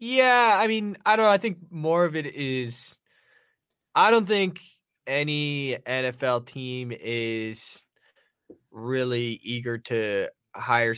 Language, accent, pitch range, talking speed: English, American, 120-155 Hz, 125 wpm